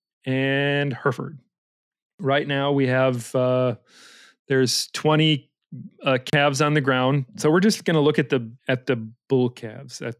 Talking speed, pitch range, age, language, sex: 160 wpm, 125-145 Hz, 40-59, English, male